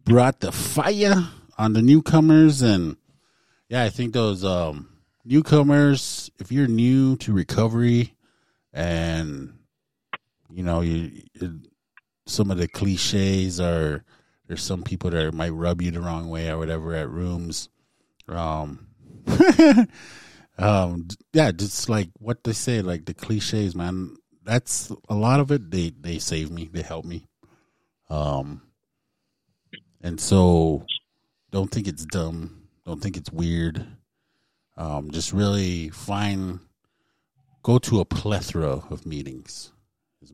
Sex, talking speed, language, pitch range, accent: male, 130 wpm, English, 80-110 Hz, American